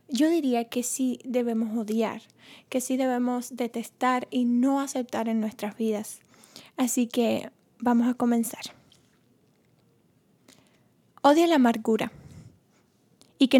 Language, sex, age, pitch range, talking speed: Spanish, female, 20-39, 225-260 Hz, 115 wpm